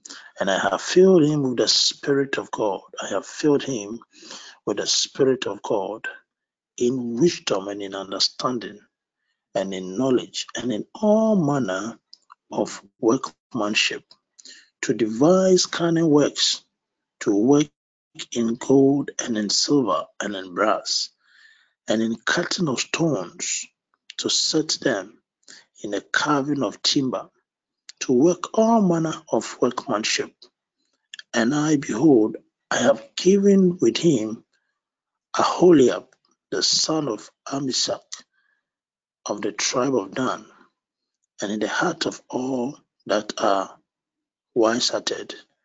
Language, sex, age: English, male, 50-69